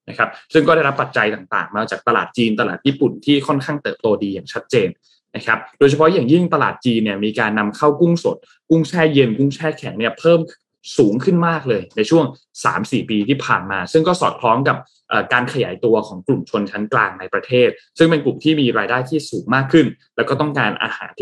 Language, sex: Thai, male